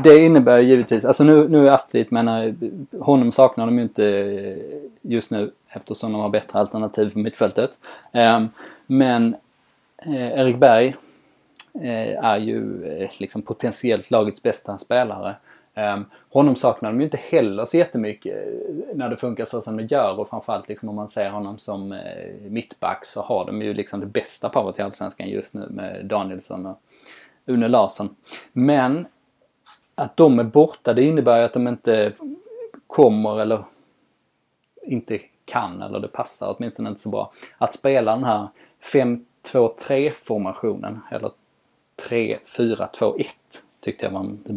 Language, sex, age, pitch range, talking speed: Swedish, male, 20-39, 105-135 Hz, 145 wpm